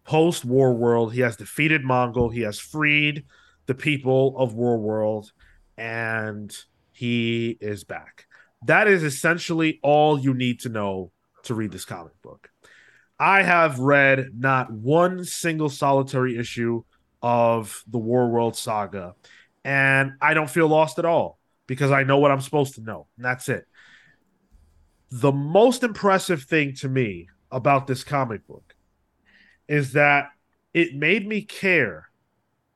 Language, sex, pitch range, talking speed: English, male, 120-175 Hz, 145 wpm